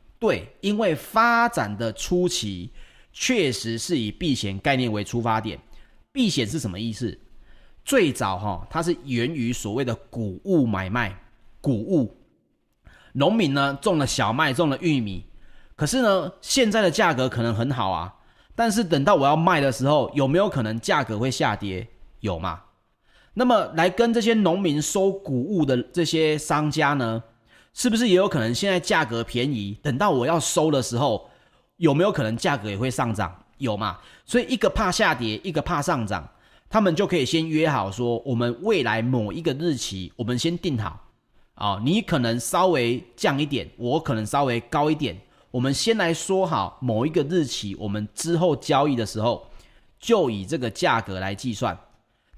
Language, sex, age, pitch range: Chinese, male, 30-49, 115-170 Hz